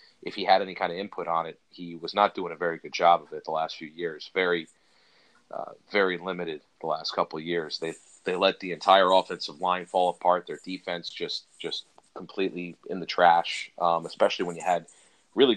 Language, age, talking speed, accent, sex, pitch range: English, 30-49, 210 wpm, American, male, 85-95 Hz